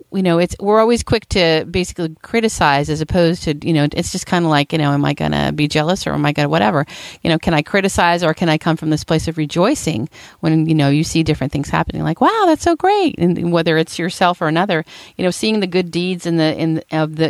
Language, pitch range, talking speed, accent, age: English, 155-180 Hz, 265 wpm, American, 40-59